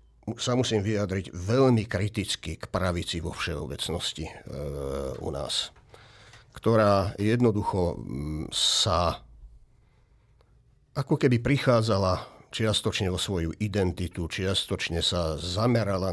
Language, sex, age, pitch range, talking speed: Slovak, male, 50-69, 90-115 Hz, 95 wpm